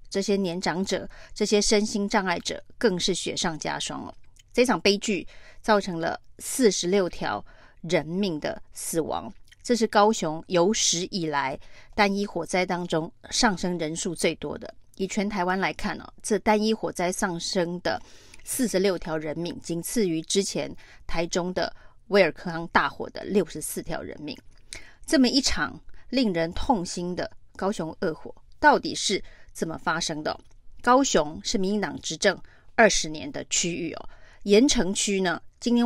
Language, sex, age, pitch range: Chinese, female, 30-49, 175-215 Hz